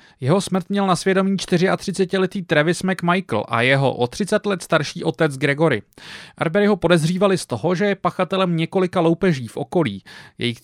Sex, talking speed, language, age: male, 160 wpm, English, 30-49